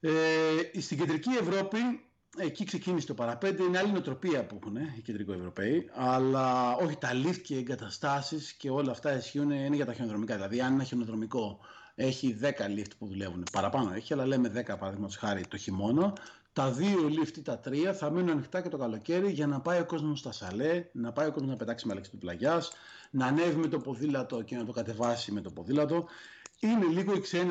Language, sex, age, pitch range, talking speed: Greek, male, 30-49, 115-175 Hz, 195 wpm